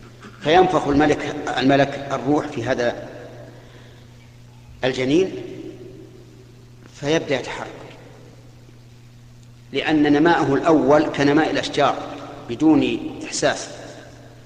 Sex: male